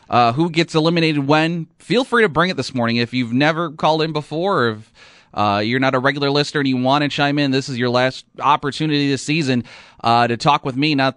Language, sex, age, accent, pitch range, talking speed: English, male, 30-49, American, 125-150 Hz, 240 wpm